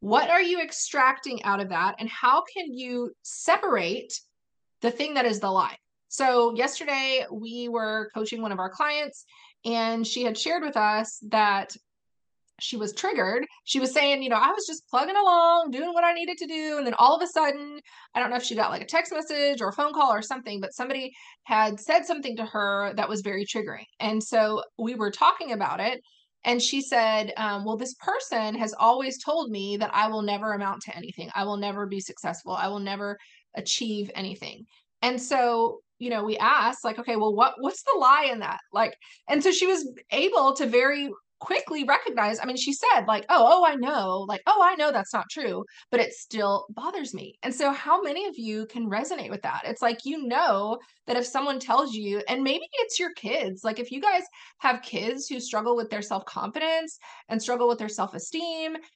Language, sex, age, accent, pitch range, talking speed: English, female, 20-39, American, 220-300 Hz, 210 wpm